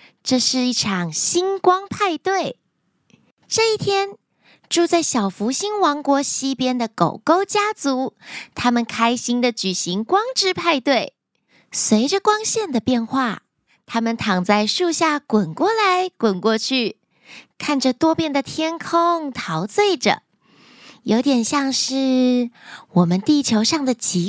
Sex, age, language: female, 20-39, Chinese